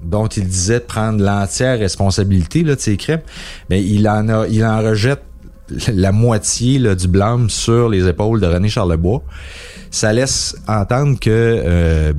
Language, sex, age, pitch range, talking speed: French, male, 30-49, 85-110 Hz, 155 wpm